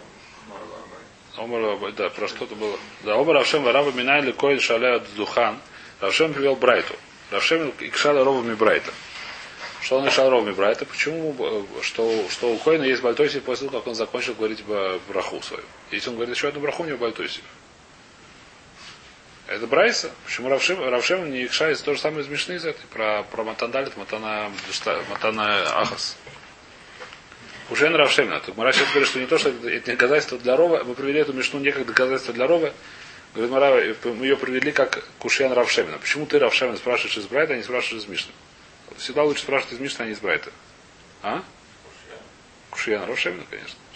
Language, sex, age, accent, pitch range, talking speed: Russian, male, 30-49, native, 120-155 Hz, 160 wpm